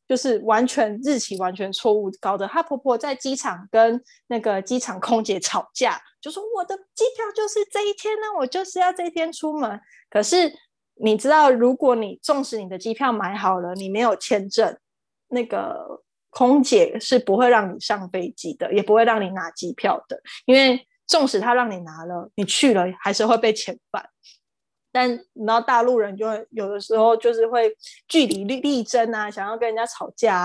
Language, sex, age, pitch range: Chinese, female, 20-39, 195-255 Hz